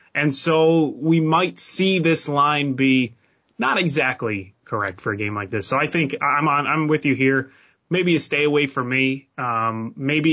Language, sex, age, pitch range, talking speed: English, male, 20-39, 120-160 Hz, 190 wpm